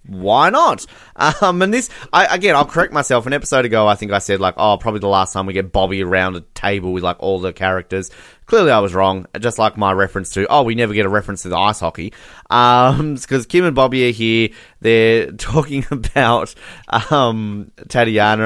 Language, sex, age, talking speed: English, male, 30-49, 210 wpm